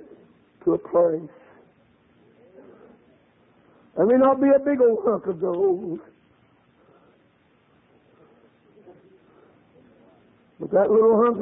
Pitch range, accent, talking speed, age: 210-300 Hz, American, 95 wpm, 60-79